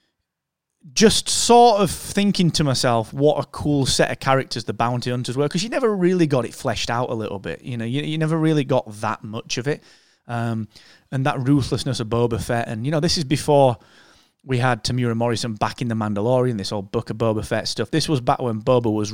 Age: 20-39